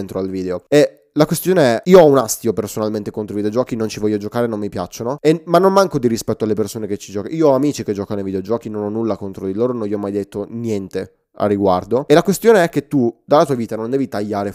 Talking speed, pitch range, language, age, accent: 270 wpm, 105-140 Hz, Italian, 20-39, native